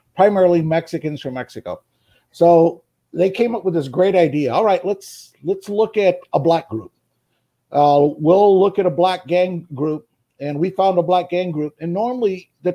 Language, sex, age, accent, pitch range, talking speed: English, male, 50-69, American, 150-195 Hz, 190 wpm